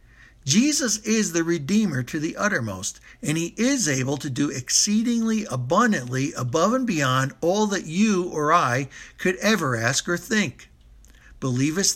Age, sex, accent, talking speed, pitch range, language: 60-79, male, American, 145 wpm, 130-190 Hz, English